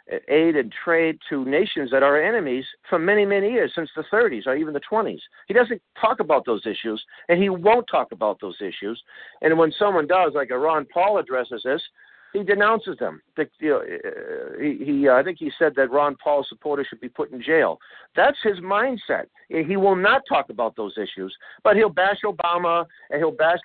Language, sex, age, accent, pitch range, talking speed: English, male, 50-69, American, 150-225 Hz, 190 wpm